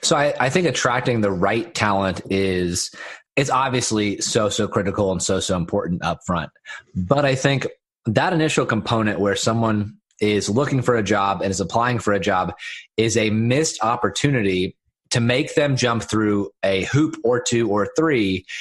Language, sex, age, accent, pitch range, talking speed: English, male, 30-49, American, 100-125 Hz, 175 wpm